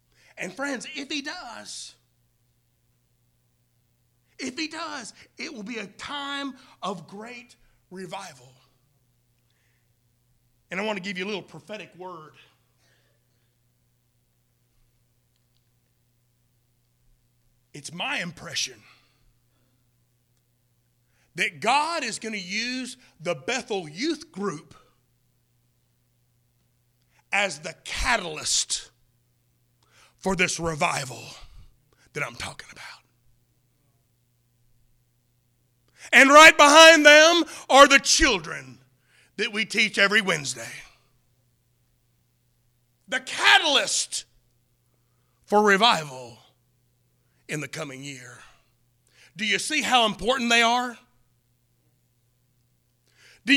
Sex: male